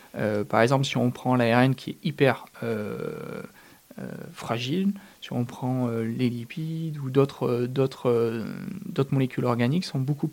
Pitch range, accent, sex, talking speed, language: 125-155 Hz, French, male, 155 wpm, French